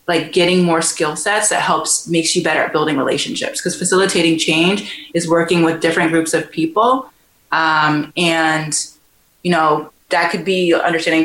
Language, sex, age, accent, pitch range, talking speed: English, female, 20-39, American, 160-185 Hz, 165 wpm